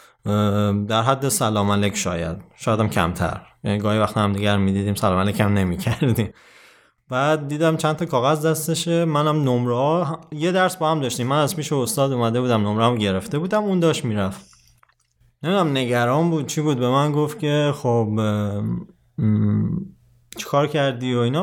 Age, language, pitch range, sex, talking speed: 20-39, Persian, 110-155 Hz, male, 165 wpm